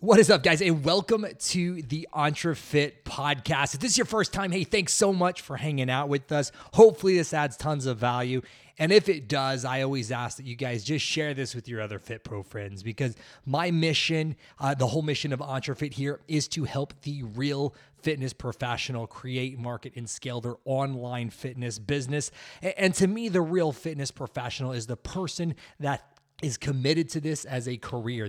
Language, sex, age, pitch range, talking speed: English, male, 20-39, 125-155 Hz, 195 wpm